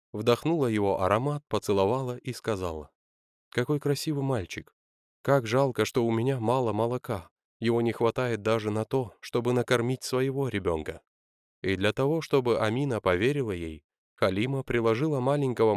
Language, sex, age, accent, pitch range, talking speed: Russian, male, 20-39, native, 95-125 Hz, 135 wpm